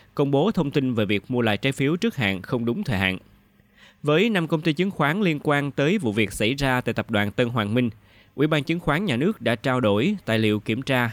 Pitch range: 110-145 Hz